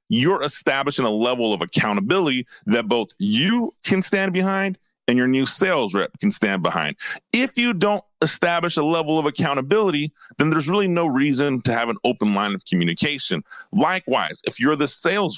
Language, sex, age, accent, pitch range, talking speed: English, male, 30-49, American, 125-185 Hz, 175 wpm